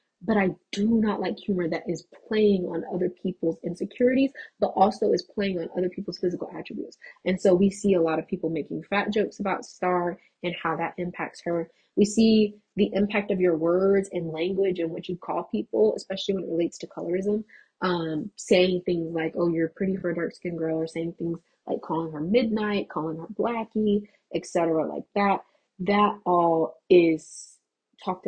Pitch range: 170-195 Hz